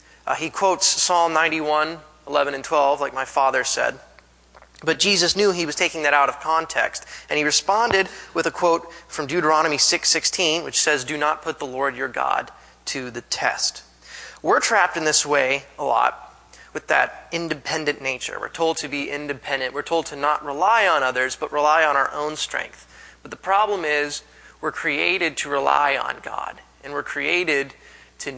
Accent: American